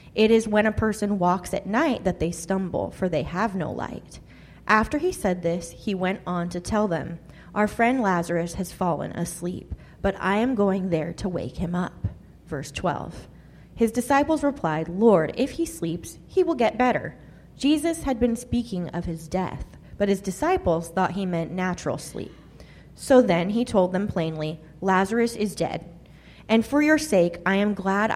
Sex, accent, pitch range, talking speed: female, American, 170-215 Hz, 180 wpm